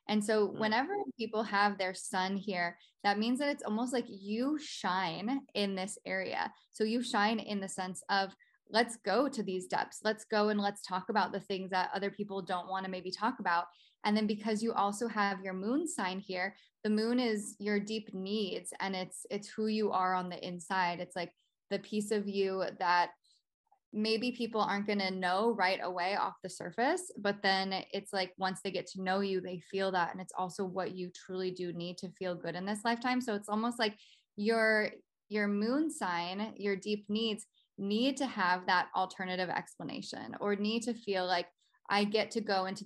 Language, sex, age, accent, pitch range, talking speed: English, female, 10-29, American, 185-215 Hz, 205 wpm